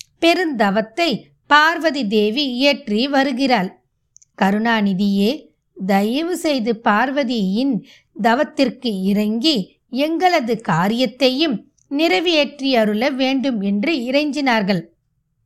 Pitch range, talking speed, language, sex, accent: 200-270 Hz, 70 wpm, Tamil, female, native